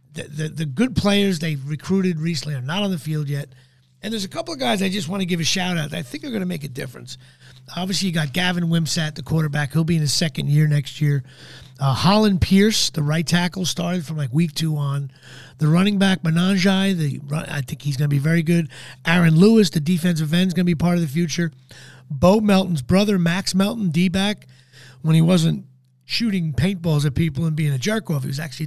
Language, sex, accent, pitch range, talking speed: English, male, American, 140-185 Hz, 230 wpm